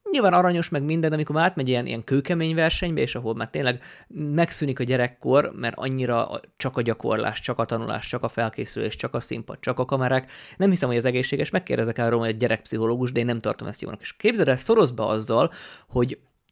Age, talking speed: 20-39, 205 wpm